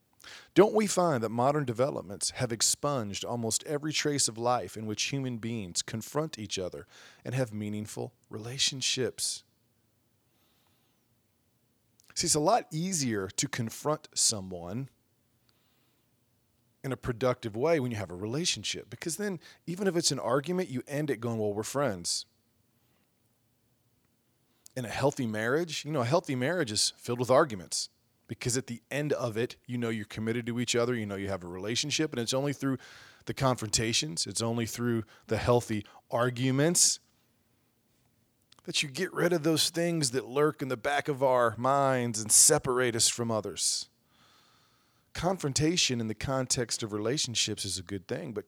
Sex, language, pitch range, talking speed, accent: male, English, 115-140 Hz, 160 wpm, American